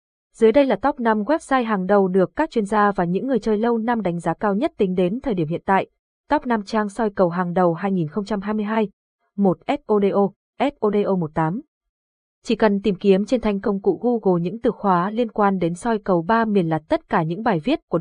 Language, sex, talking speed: Vietnamese, female, 215 wpm